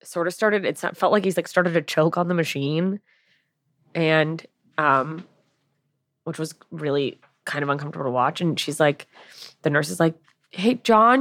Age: 20-39